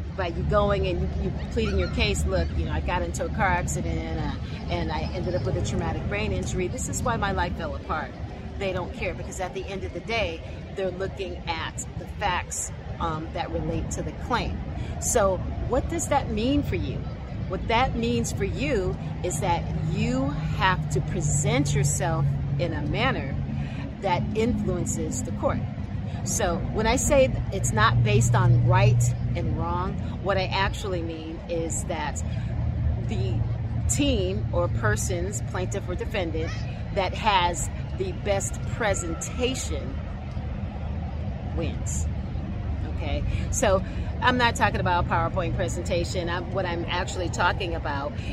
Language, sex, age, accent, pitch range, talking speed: English, female, 40-59, American, 80-115 Hz, 155 wpm